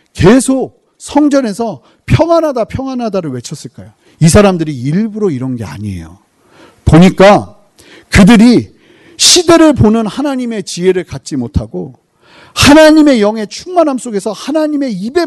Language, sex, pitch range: Korean, male, 165-255 Hz